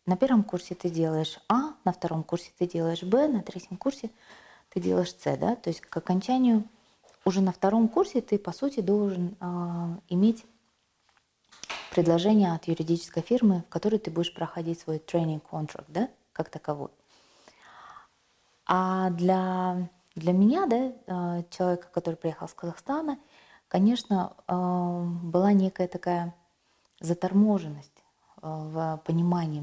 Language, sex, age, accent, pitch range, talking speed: Russian, female, 20-39, native, 170-205 Hz, 130 wpm